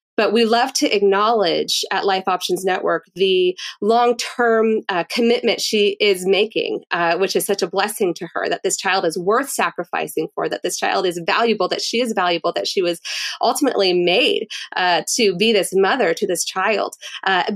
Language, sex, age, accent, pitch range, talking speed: English, female, 30-49, American, 190-235 Hz, 190 wpm